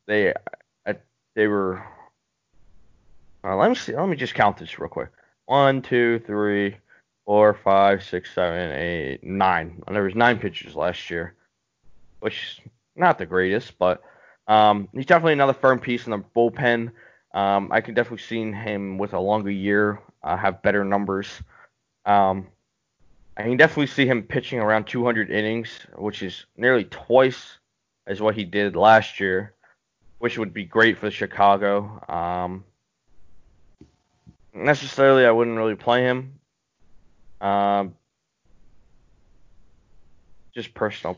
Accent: American